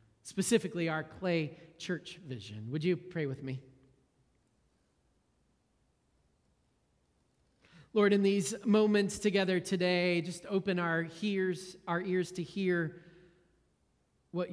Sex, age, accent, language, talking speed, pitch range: male, 30-49, American, English, 105 wpm, 115-185 Hz